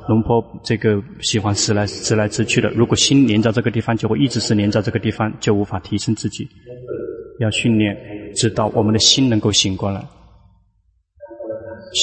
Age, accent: 20-39, native